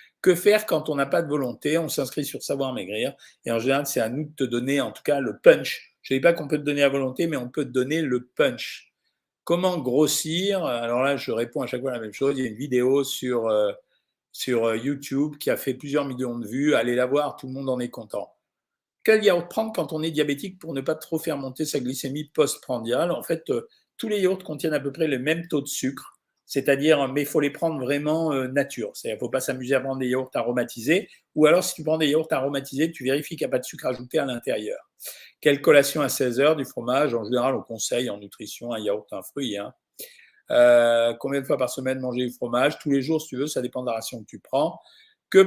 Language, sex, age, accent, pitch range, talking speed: French, male, 50-69, French, 130-160 Hz, 255 wpm